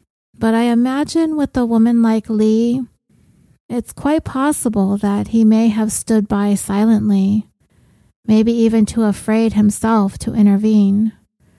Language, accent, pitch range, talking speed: English, American, 205-235 Hz, 130 wpm